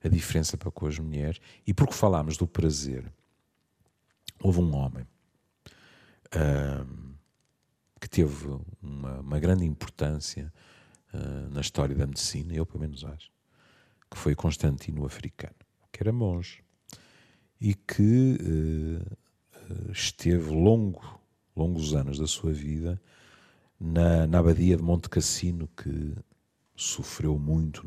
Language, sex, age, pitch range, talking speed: Portuguese, male, 50-69, 75-110 Hz, 110 wpm